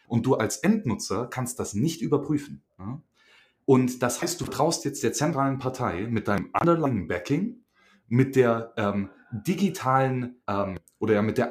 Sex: male